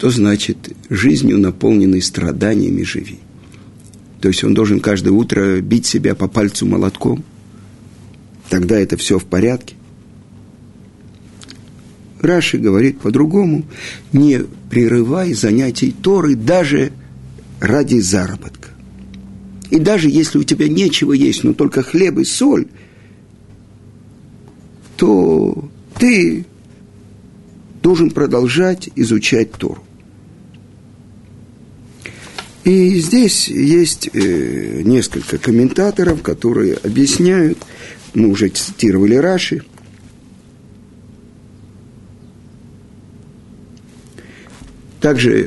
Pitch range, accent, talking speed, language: 105-155 Hz, native, 85 wpm, Russian